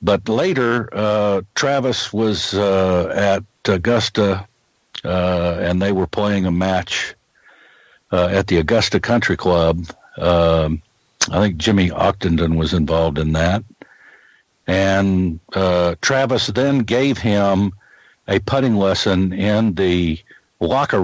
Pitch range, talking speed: 90-115 Hz, 120 wpm